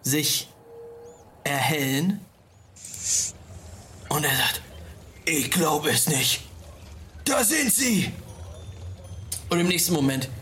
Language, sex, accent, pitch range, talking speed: German, male, German, 115-165 Hz, 90 wpm